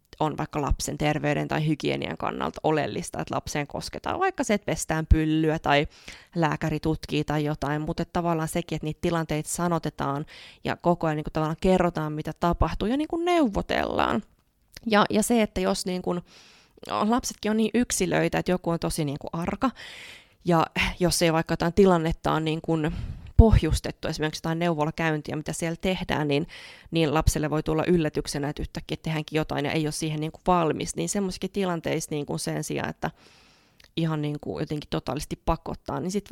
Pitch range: 155-190 Hz